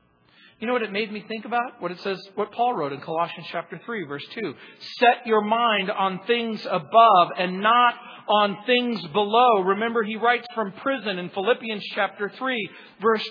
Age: 40-59